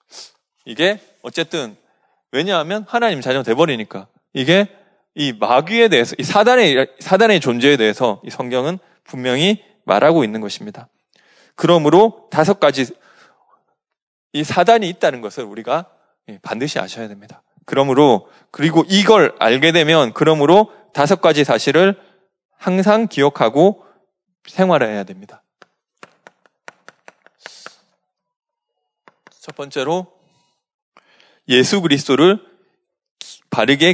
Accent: native